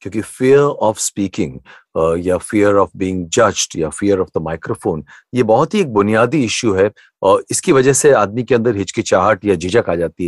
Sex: male